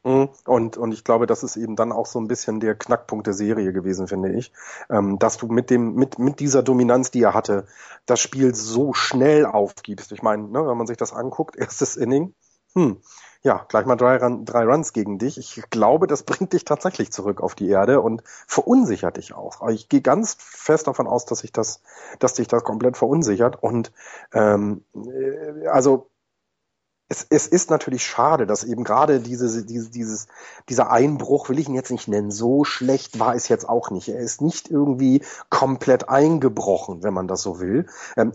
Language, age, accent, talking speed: German, 30-49, German, 195 wpm